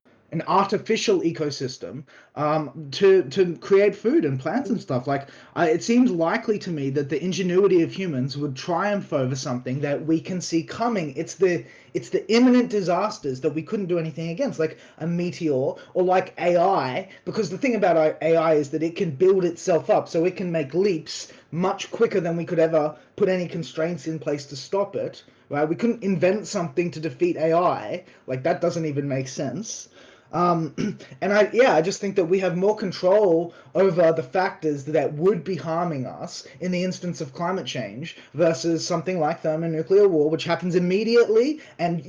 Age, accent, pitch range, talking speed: 20-39, Australian, 155-190 Hz, 185 wpm